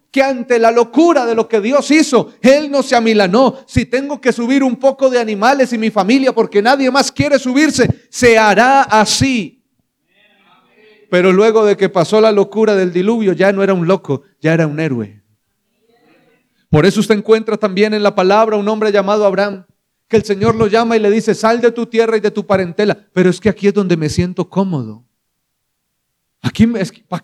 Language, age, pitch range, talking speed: Spanish, 40-59, 195-250 Hz, 195 wpm